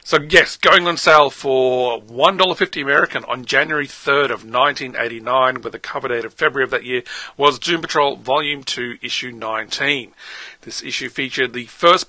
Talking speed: 170 wpm